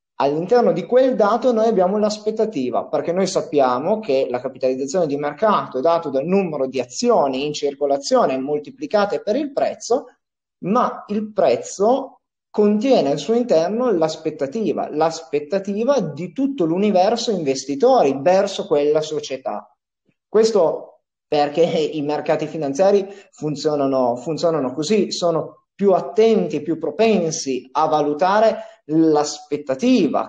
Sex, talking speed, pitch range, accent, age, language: male, 120 wpm, 145-205 Hz, native, 30-49, Italian